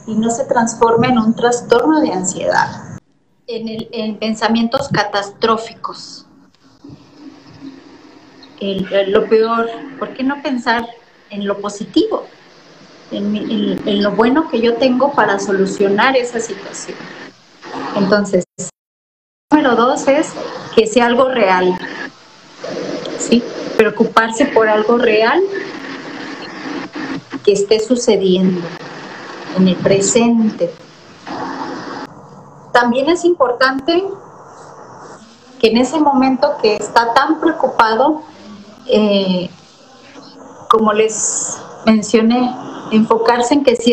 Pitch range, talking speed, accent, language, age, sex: 215-265 Hz, 105 wpm, Mexican, Spanish, 30-49, female